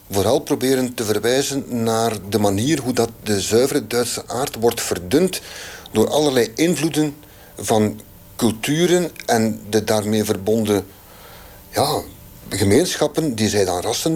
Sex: male